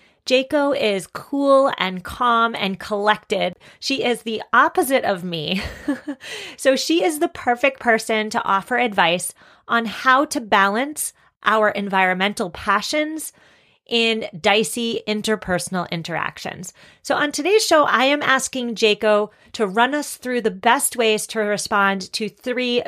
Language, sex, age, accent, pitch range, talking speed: English, female, 30-49, American, 185-245 Hz, 135 wpm